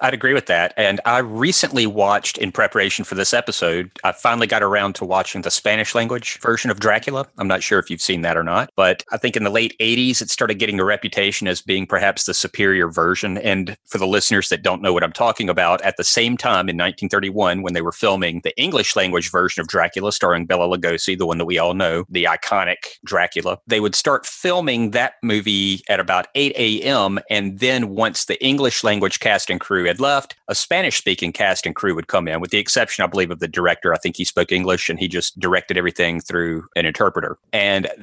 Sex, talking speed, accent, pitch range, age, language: male, 220 wpm, American, 90-110 Hz, 40-59, English